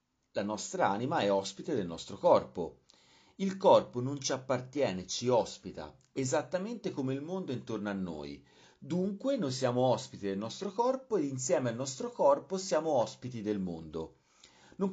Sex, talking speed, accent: male, 155 wpm, native